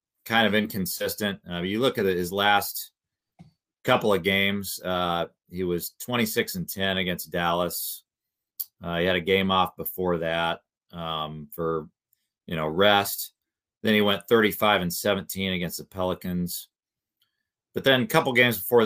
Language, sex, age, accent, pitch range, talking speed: English, male, 40-59, American, 90-105 Hz, 155 wpm